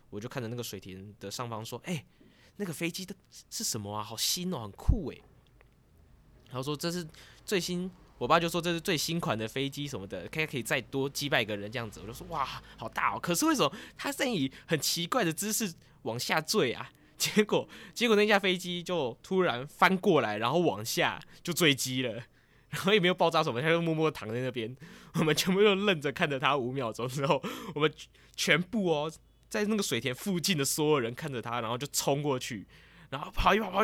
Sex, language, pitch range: male, Chinese, 125-190 Hz